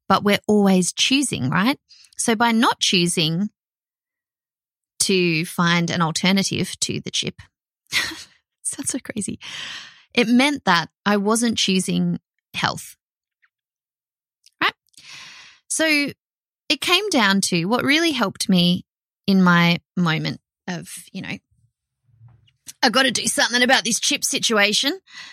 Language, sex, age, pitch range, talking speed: English, female, 20-39, 190-285 Hz, 120 wpm